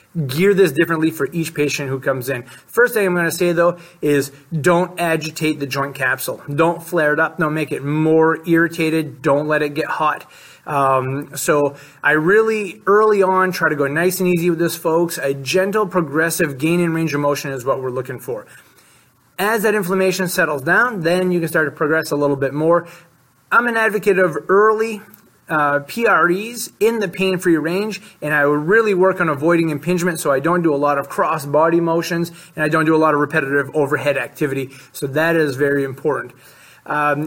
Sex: male